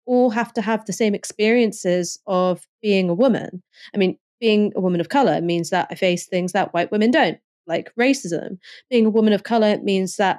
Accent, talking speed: British, 210 wpm